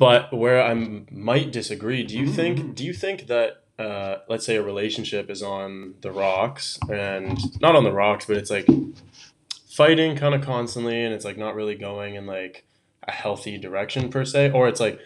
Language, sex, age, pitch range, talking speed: English, male, 20-39, 105-125 Hz, 195 wpm